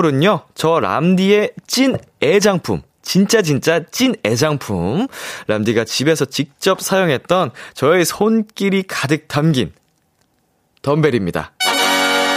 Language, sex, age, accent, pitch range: Korean, male, 20-39, native, 110-160 Hz